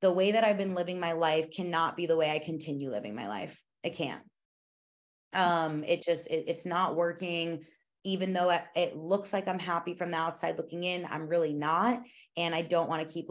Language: English